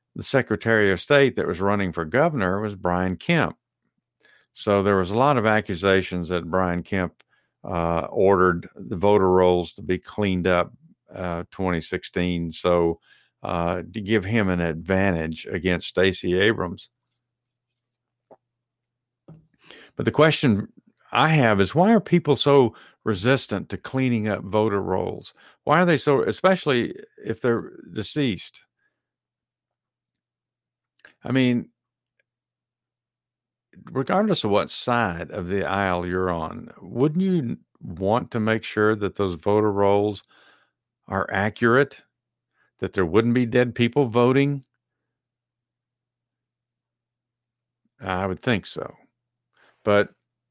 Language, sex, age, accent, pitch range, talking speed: English, male, 50-69, American, 90-125 Hz, 120 wpm